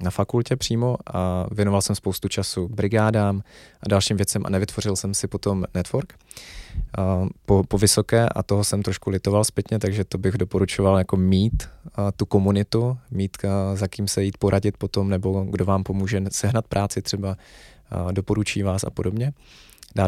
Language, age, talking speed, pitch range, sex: Czech, 20-39, 175 wpm, 95-105 Hz, male